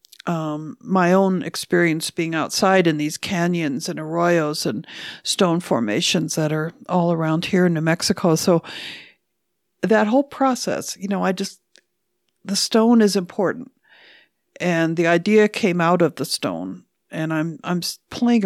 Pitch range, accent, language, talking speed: 160-200 Hz, American, English, 150 wpm